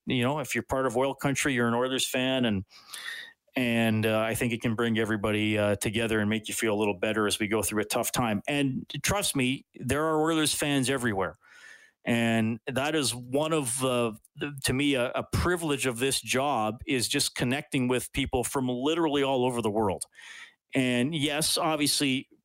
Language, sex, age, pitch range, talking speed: English, male, 40-59, 115-135 Hz, 200 wpm